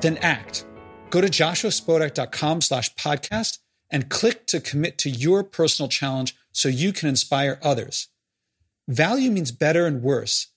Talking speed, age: 135 wpm, 40-59